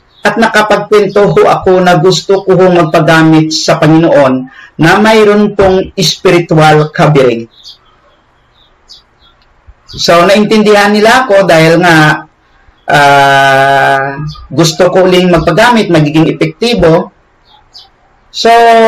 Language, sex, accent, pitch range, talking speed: Filipino, male, native, 155-195 Hz, 90 wpm